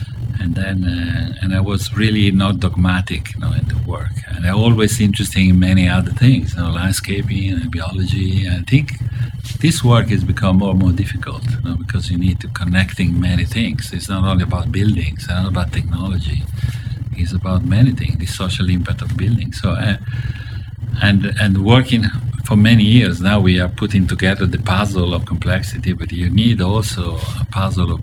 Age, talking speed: 50-69, 190 wpm